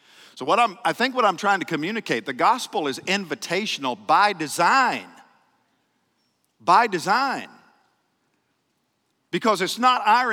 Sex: male